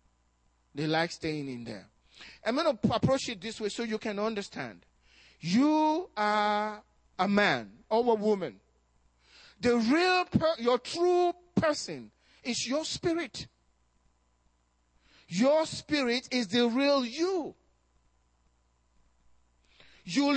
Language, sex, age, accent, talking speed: English, male, 40-59, Nigerian, 115 wpm